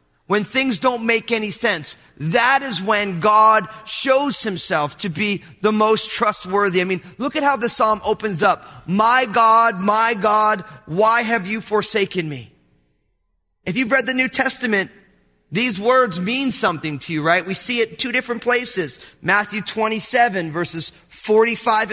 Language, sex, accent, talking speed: English, male, American, 160 wpm